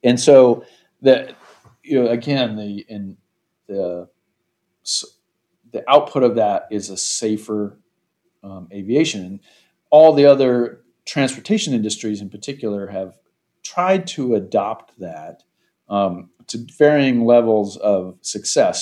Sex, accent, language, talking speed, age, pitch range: male, American, English, 115 wpm, 40-59, 100-130 Hz